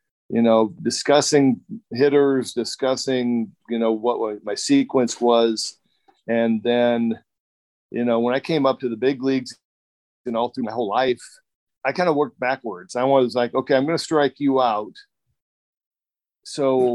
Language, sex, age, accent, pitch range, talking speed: English, male, 40-59, American, 120-140 Hz, 165 wpm